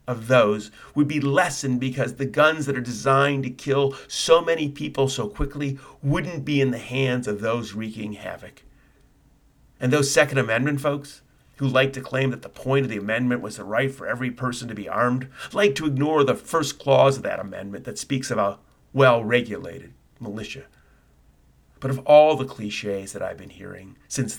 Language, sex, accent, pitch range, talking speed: English, male, American, 105-135 Hz, 185 wpm